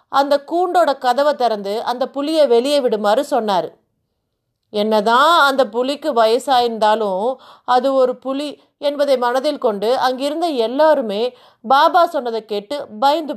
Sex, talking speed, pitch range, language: female, 115 wpm, 225-295 Hz, Tamil